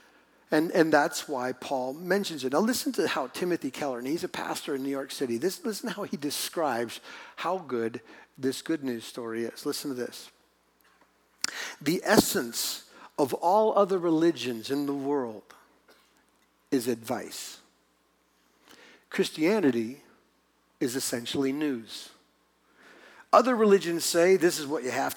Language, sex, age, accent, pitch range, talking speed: English, male, 50-69, American, 125-160 Hz, 140 wpm